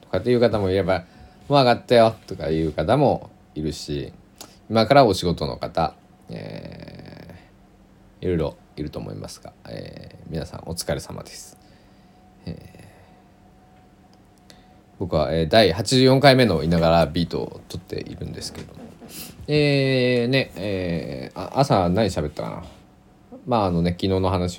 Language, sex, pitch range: Japanese, male, 85-110 Hz